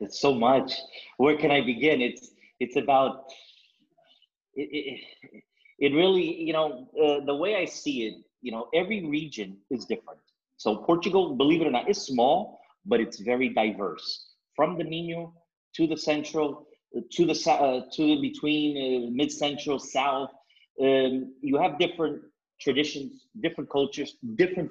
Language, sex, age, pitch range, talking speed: English, male, 30-49, 125-165 Hz, 155 wpm